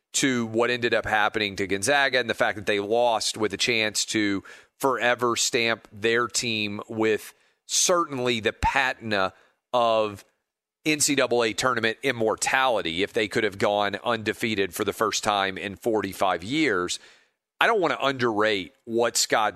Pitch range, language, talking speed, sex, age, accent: 105-135 Hz, English, 150 wpm, male, 40-59, American